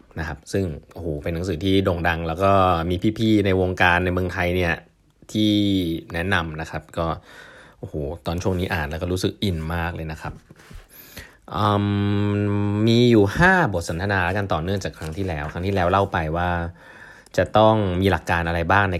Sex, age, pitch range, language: male, 20-39, 85-105 Hz, Thai